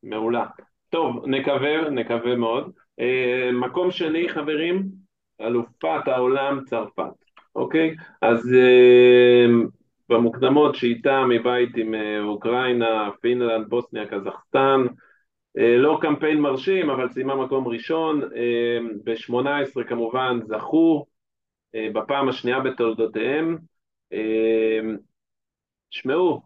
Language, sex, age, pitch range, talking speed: Hebrew, male, 40-59, 115-140 Hz, 100 wpm